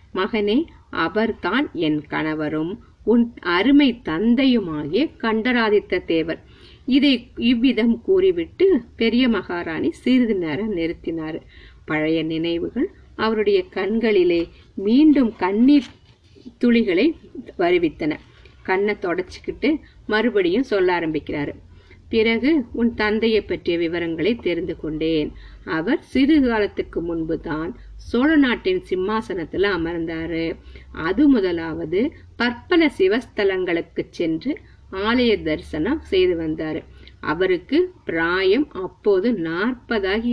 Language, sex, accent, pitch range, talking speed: Tamil, female, native, 180-285 Hz, 85 wpm